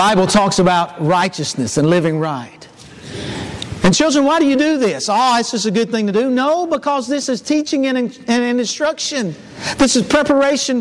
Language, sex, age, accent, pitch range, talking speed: English, male, 50-69, American, 210-260 Hz, 185 wpm